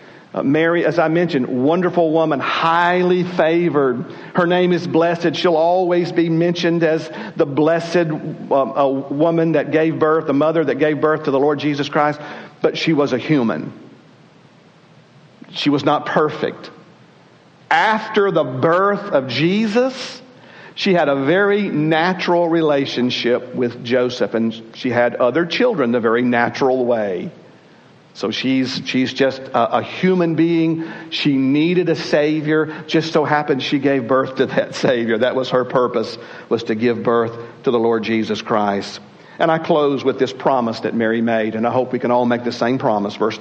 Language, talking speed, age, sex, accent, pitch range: English, 165 wpm, 50-69, male, American, 125-170 Hz